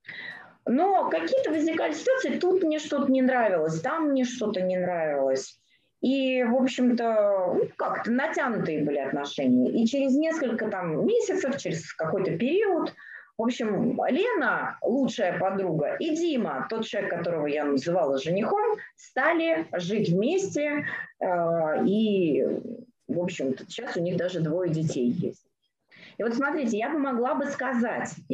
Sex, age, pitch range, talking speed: female, 20-39, 180-285 Hz, 135 wpm